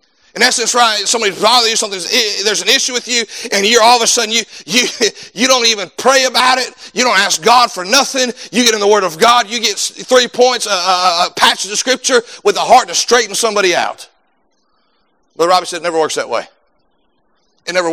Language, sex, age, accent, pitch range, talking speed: English, male, 40-59, American, 205-260 Hz, 225 wpm